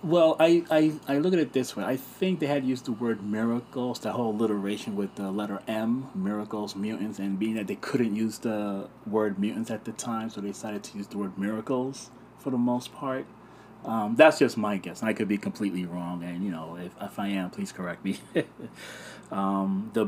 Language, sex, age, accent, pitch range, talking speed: English, male, 30-49, American, 95-125 Hz, 220 wpm